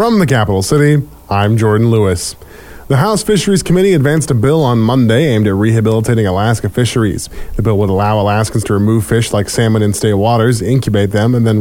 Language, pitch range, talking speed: English, 105-140 Hz, 195 wpm